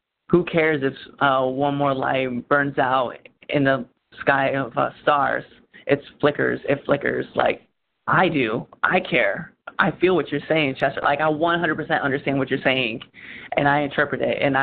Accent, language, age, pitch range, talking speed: American, English, 20-39, 140-155 Hz, 170 wpm